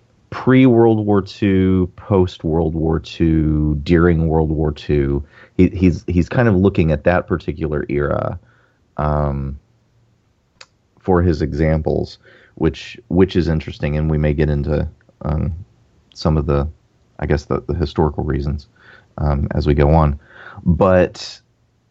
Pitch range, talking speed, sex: 75-90 Hz, 135 wpm, male